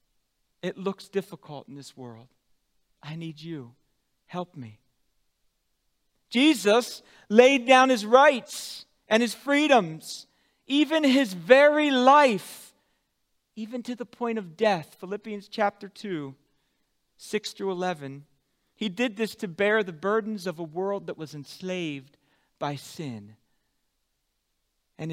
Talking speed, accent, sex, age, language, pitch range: 120 wpm, American, male, 40-59, English, 145-235 Hz